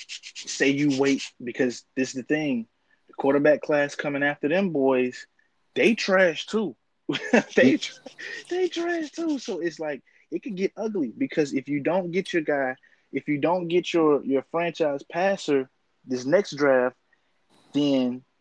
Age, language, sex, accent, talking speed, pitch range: 20-39, English, male, American, 155 wpm, 125-165 Hz